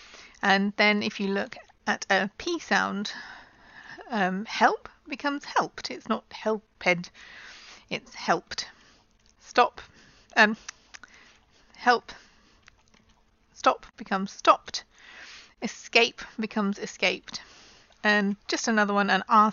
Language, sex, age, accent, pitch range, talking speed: English, female, 40-59, British, 205-235 Hz, 100 wpm